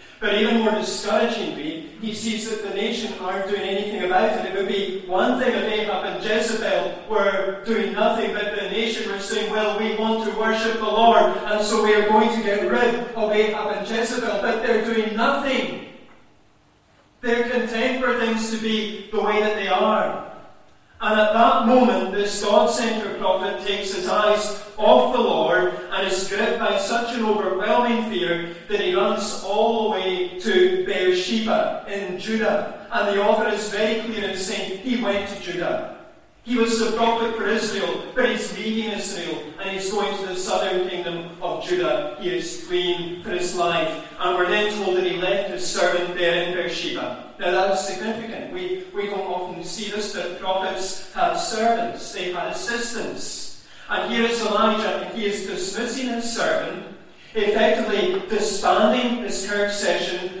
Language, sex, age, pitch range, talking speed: English, male, 40-59, 195-225 Hz, 175 wpm